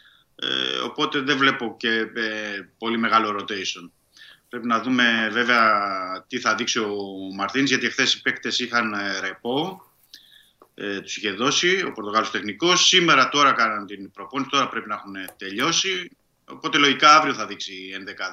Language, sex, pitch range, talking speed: Greek, male, 100-125 Hz, 145 wpm